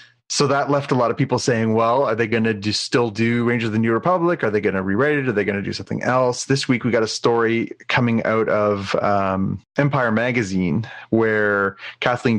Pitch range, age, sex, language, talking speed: 105-125 Hz, 30-49, male, English, 230 wpm